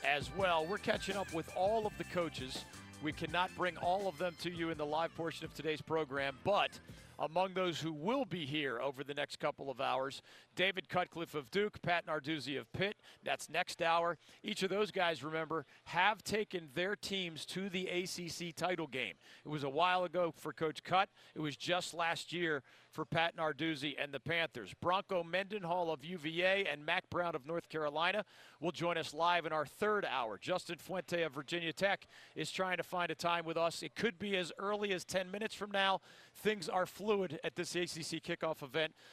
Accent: American